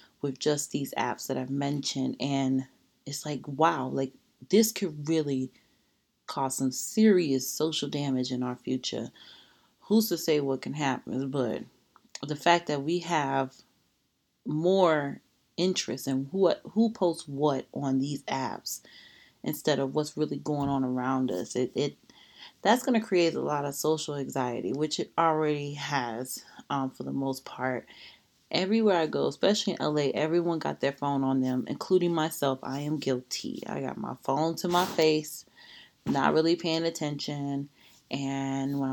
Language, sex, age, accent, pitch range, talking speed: English, female, 30-49, American, 135-165 Hz, 160 wpm